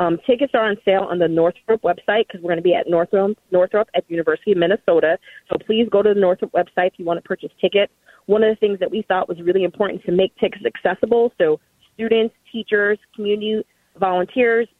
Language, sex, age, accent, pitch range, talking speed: English, female, 30-49, American, 180-220 Hz, 215 wpm